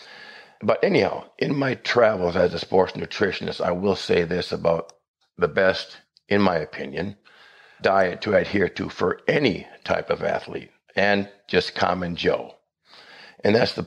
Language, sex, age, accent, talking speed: English, male, 50-69, American, 150 wpm